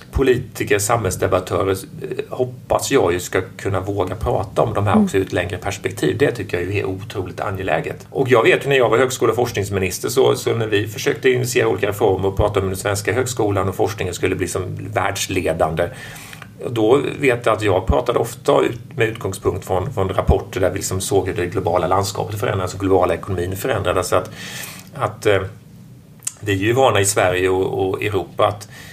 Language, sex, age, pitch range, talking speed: English, male, 30-49, 95-110 Hz, 185 wpm